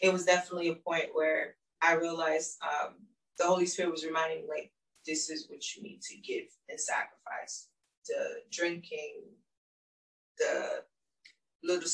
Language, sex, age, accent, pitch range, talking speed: English, female, 20-39, American, 170-225 Hz, 145 wpm